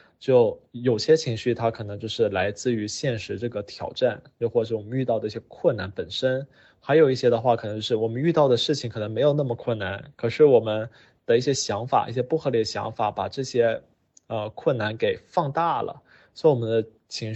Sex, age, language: male, 20-39, Chinese